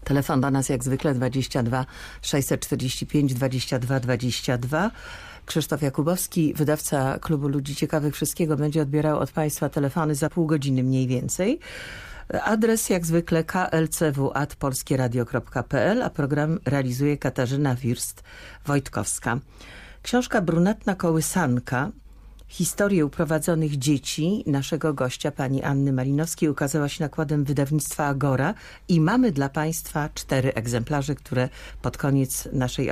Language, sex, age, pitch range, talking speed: Polish, female, 50-69, 135-170 Hz, 110 wpm